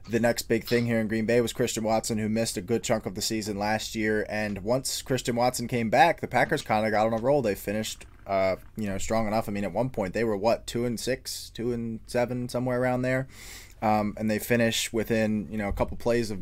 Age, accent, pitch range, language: 20-39, American, 105-125 Hz, English